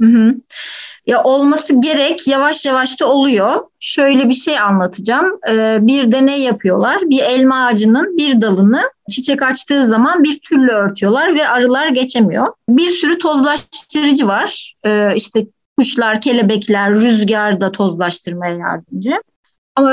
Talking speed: 130 wpm